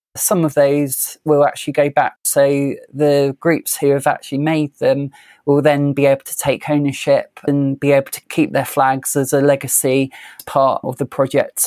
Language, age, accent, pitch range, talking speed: English, 20-39, British, 135-145 Hz, 185 wpm